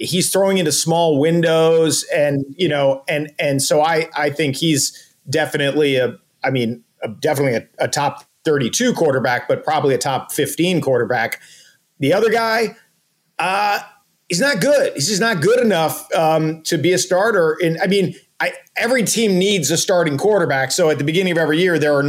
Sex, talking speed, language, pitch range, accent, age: male, 185 wpm, English, 145-185 Hz, American, 40-59